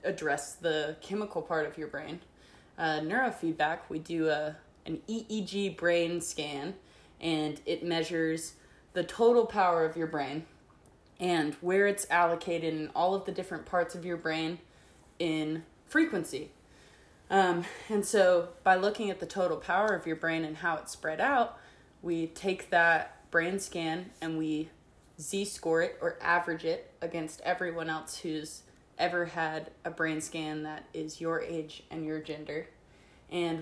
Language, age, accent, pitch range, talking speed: English, 20-39, American, 160-195 Hz, 155 wpm